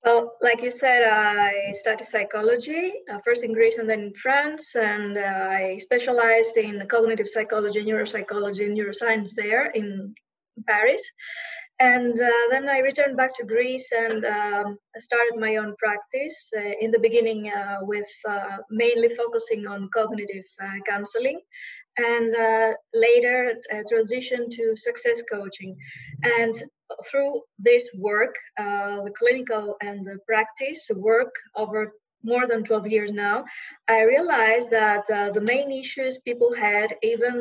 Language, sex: English, female